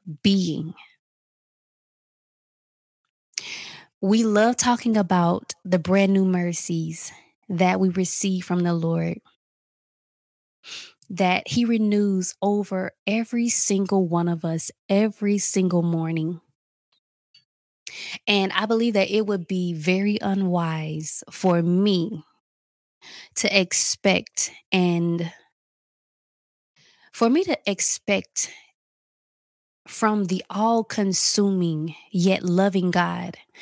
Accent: American